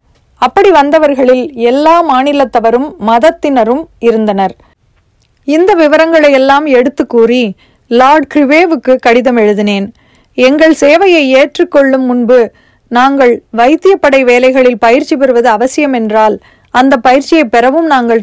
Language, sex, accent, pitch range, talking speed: Tamil, female, native, 235-290 Hz, 100 wpm